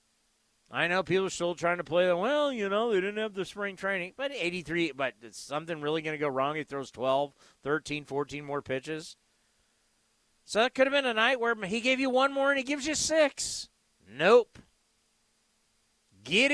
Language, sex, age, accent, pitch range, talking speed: English, male, 40-59, American, 160-220 Hz, 195 wpm